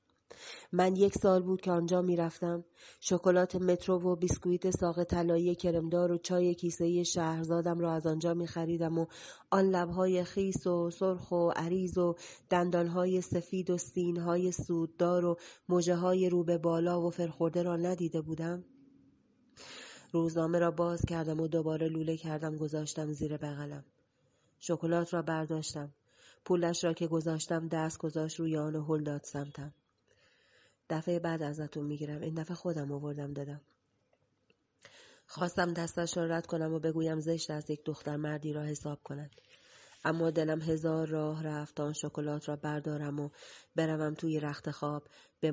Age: 30-49